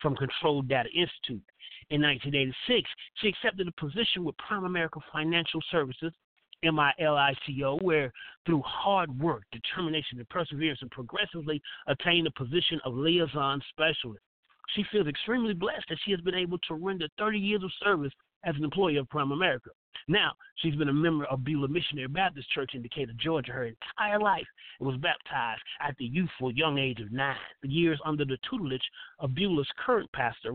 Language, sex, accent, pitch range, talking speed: English, male, American, 140-175 Hz, 170 wpm